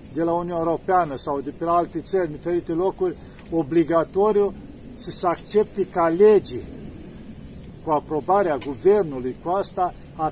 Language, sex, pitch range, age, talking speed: Romanian, male, 145-180 Hz, 50-69, 140 wpm